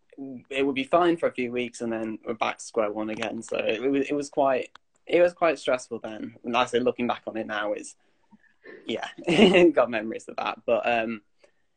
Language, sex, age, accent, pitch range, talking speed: English, male, 10-29, British, 110-140 Hz, 225 wpm